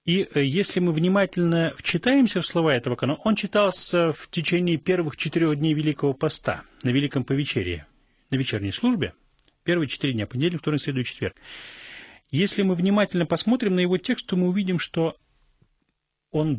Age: 30-49